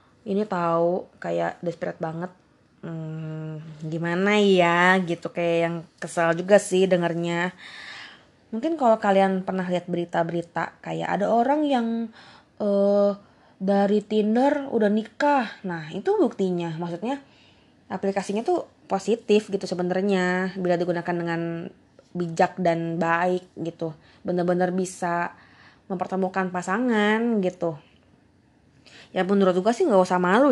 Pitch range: 175-205 Hz